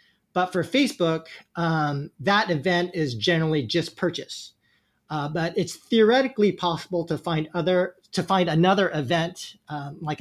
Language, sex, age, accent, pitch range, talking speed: English, male, 40-59, American, 145-180 Hz, 140 wpm